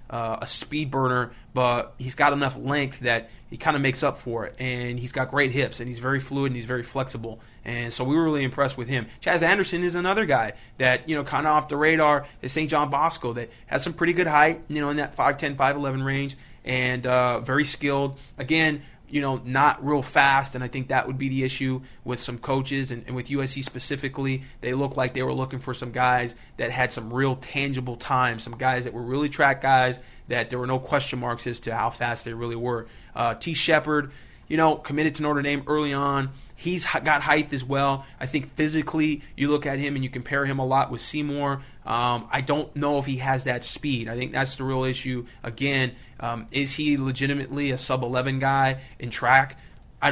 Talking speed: 225 wpm